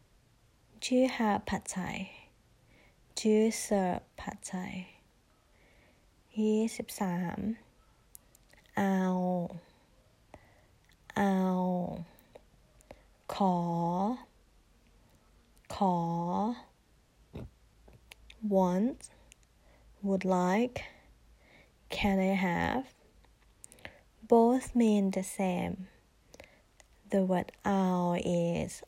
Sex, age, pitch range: female, 20-39, 180-205 Hz